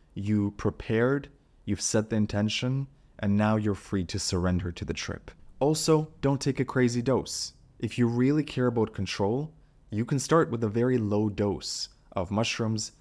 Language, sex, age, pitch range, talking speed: English, male, 20-39, 95-120 Hz, 170 wpm